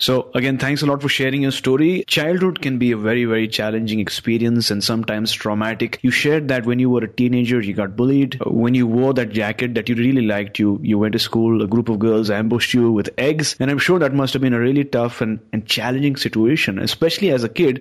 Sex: male